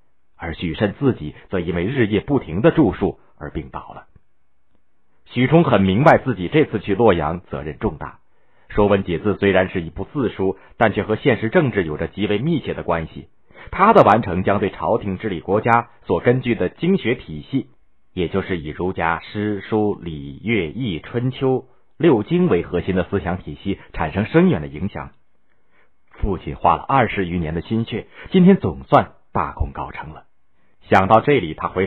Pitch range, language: 80-120 Hz, Chinese